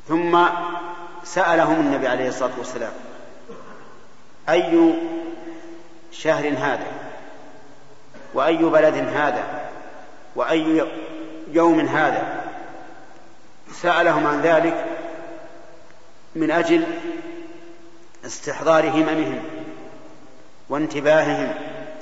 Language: Arabic